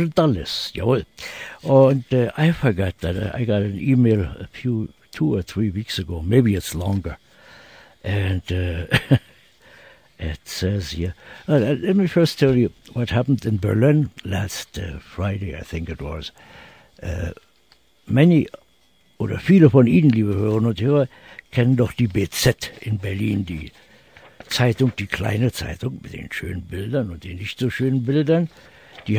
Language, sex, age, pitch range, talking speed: English, male, 60-79, 95-130 Hz, 155 wpm